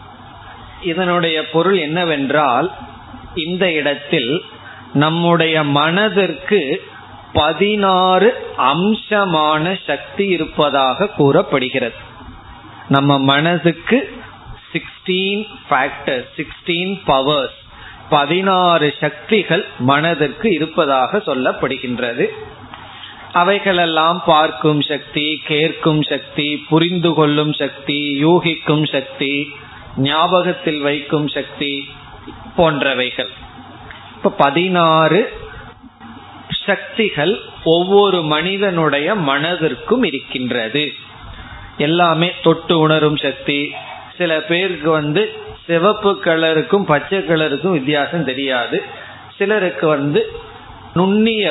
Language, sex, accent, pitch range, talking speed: Tamil, male, native, 145-180 Hz, 60 wpm